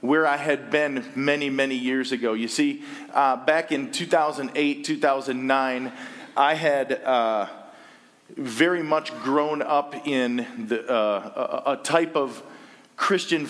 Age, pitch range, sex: 40-59, 125-150 Hz, male